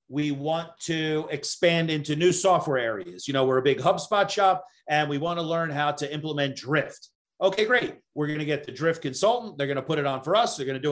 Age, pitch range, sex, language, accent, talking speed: 40-59, 135-170 Hz, male, English, American, 225 wpm